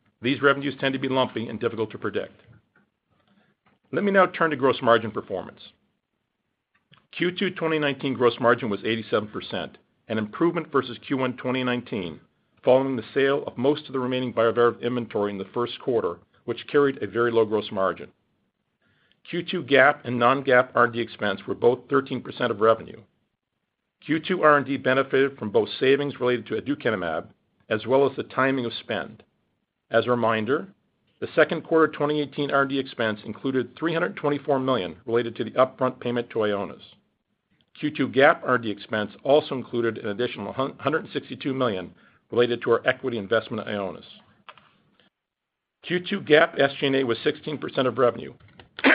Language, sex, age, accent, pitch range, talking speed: English, male, 50-69, American, 115-140 Hz, 145 wpm